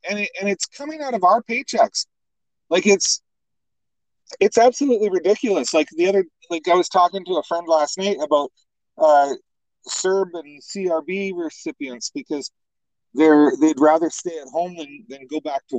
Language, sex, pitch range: English, male, 160-245 Hz